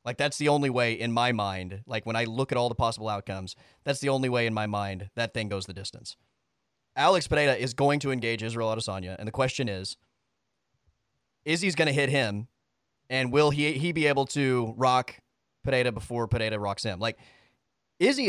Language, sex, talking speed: English, male, 205 wpm